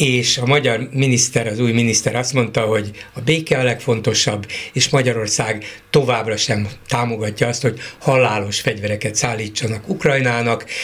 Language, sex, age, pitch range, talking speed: Hungarian, male, 60-79, 120-160 Hz, 140 wpm